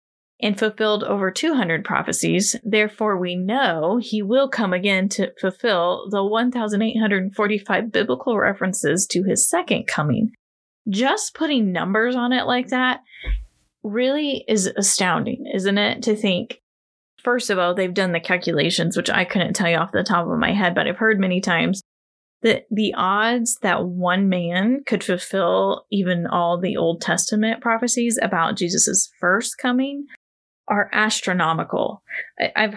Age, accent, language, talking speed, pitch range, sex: 10-29, American, English, 145 wpm, 180-225 Hz, female